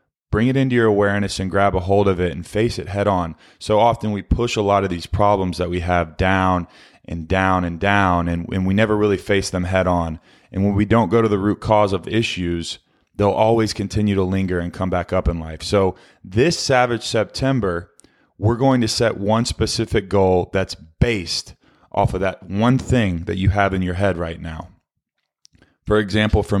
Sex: male